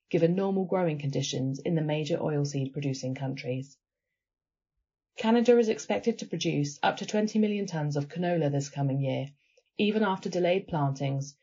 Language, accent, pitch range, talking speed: English, British, 140-195 Hz, 150 wpm